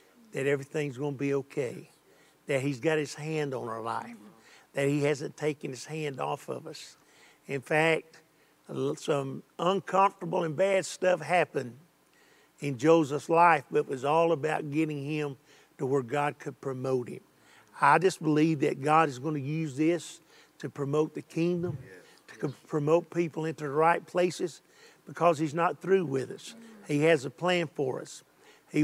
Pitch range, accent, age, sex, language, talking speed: 145-175 Hz, American, 50-69, male, English, 170 wpm